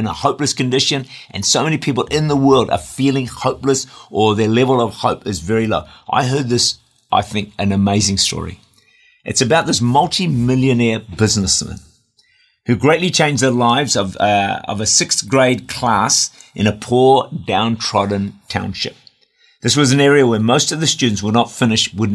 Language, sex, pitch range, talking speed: English, male, 100-135 Hz, 175 wpm